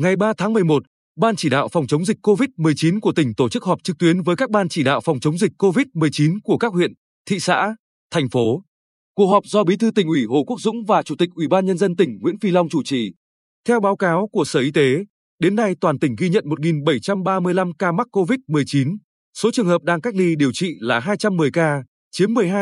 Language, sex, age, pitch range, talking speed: Vietnamese, male, 20-39, 155-200 Hz, 230 wpm